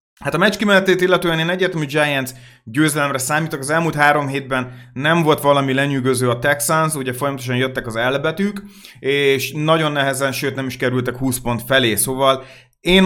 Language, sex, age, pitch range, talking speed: Hungarian, male, 30-49, 125-155 Hz, 170 wpm